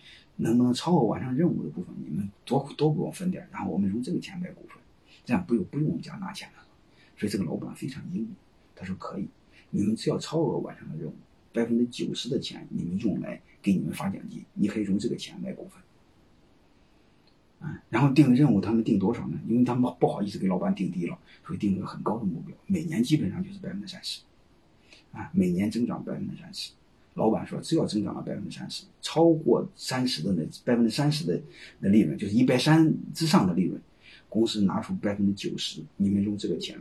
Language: Chinese